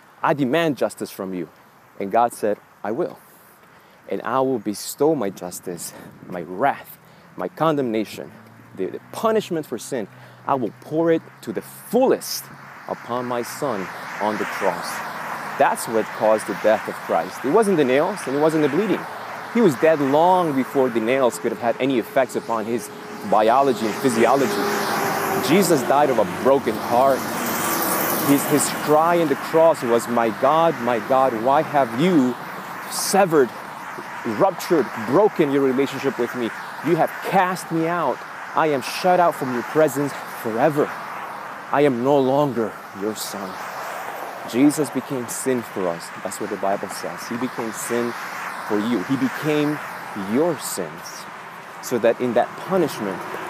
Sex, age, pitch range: male, 30-49, 120-155 Hz